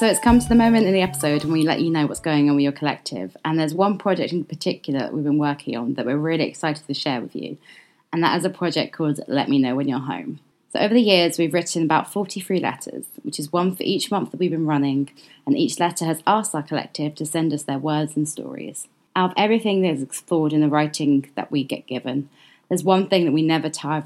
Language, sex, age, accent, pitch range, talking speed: English, female, 20-39, British, 145-175 Hz, 260 wpm